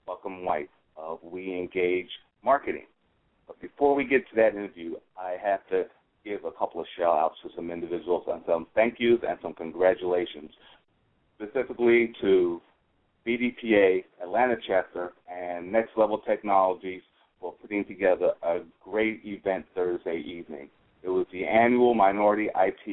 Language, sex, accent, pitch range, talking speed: English, male, American, 90-105 Hz, 140 wpm